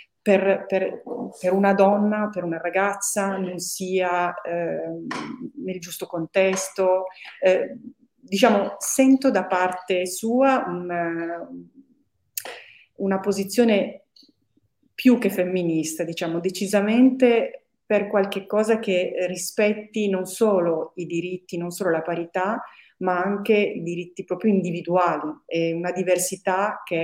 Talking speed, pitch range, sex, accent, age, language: 110 wpm, 175-220 Hz, female, native, 30-49, Italian